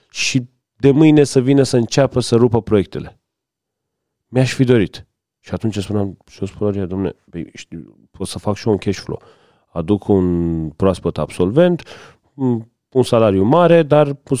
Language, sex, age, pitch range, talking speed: Romanian, male, 40-59, 105-140 Hz, 145 wpm